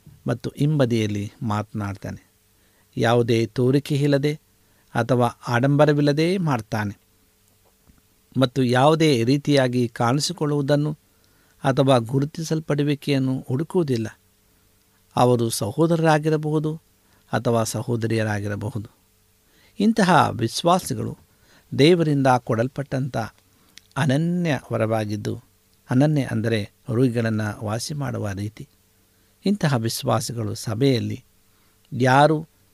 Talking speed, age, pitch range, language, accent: 65 wpm, 60-79, 105-145 Hz, Kannada, native